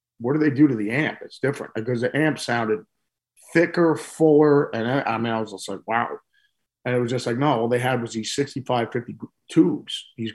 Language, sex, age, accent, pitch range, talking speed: English, male, 40-59, American, 125-160 Hz, 220 wpm